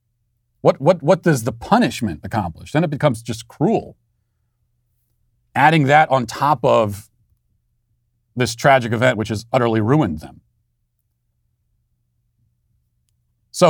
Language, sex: English, male